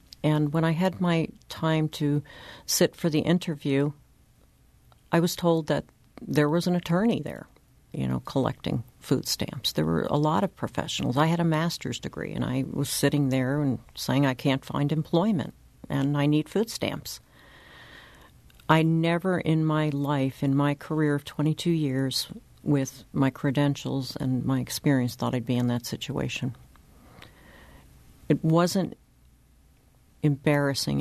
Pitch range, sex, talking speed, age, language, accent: 130-155 Hz, female, 150 wpm, 60-79, English, American